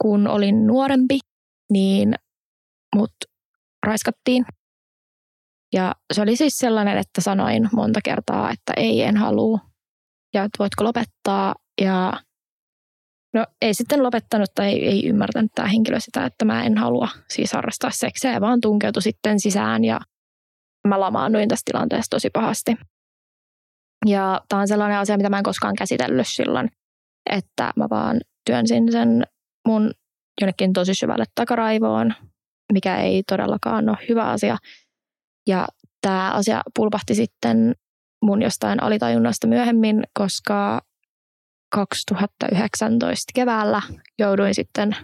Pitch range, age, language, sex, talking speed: 200-230 Hz, 20-39, Finnish, female, 125 wpm